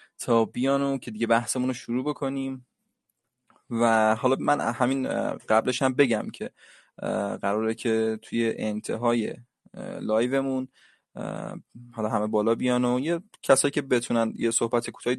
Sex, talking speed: male, 125 wpm